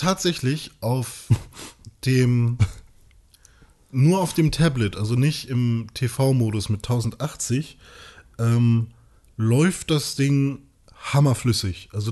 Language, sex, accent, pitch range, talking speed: German, male, German, 115-145 Hz, 95 wpm